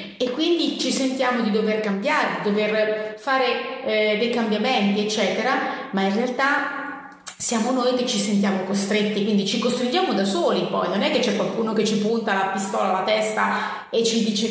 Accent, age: native, 30-49